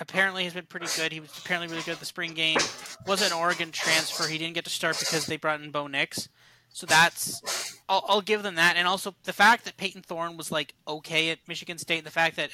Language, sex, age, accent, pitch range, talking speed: English, male, 30-49, American, 150-185 Hz, 250 wpm